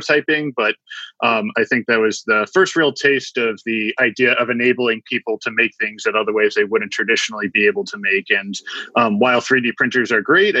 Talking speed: 205 wpm